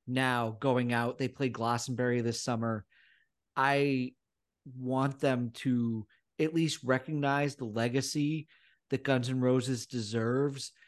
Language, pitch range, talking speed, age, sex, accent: English, 125-155 Hz, 120 wpm, 40-59, male, American